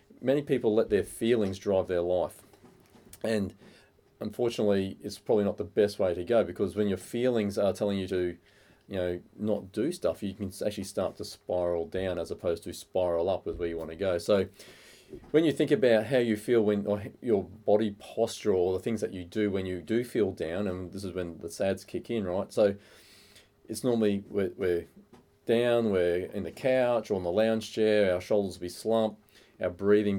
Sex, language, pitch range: male, English, 90-105 Hz